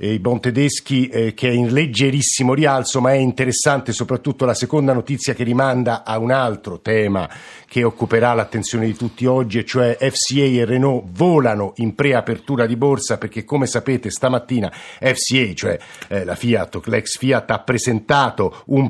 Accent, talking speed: native, 165 wpm